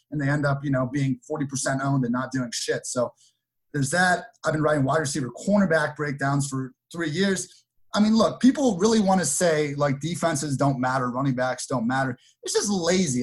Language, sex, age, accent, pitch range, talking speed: English, male, 30-49, American, 135-180 Hz, 205 wpm